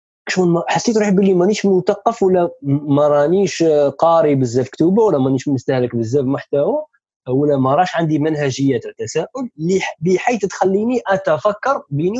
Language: Arabic